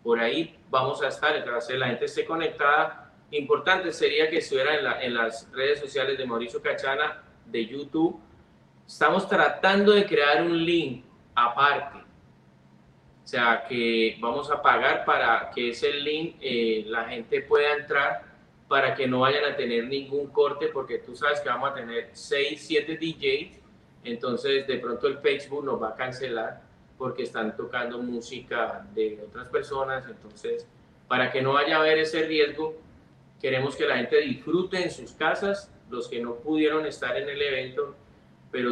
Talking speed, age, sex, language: 170 wpm, 30-49, male, Spanish